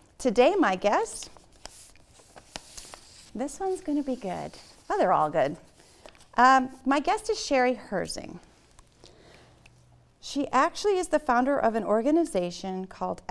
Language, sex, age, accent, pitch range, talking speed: English, female, 40-59, American, 185-235 Hz, 125 wpm